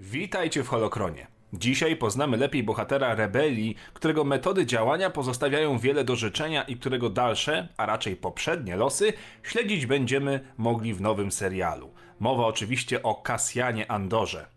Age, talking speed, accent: 30-49, 135 wpm, native